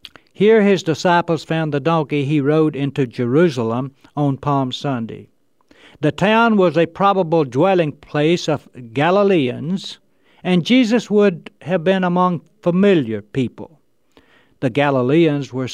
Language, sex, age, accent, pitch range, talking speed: English, male, 60-79, American, 125-180 Hz, 125 wpm